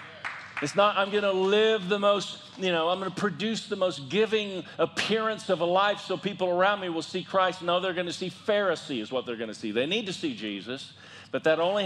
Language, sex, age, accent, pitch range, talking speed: English, male, 40-59, American, 180-215 Hz, 245 wpm